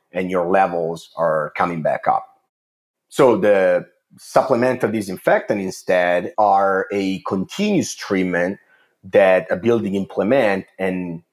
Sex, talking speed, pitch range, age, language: male, 110 wpm, 90-100 Hz, 30-49, English